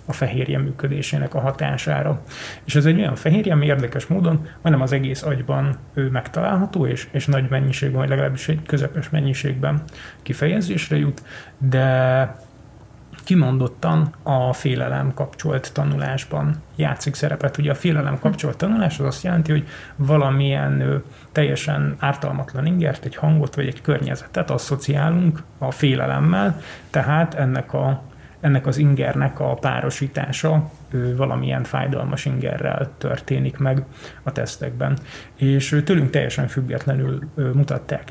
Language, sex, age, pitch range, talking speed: Hungarian, male, 30-49, 130-150 Hz, 130 wpm